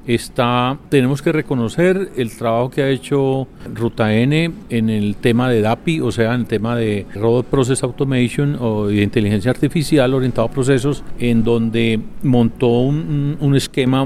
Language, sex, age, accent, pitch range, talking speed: Spanish, male, 40-59, Colombian, 110-130 Hz, 160 wpm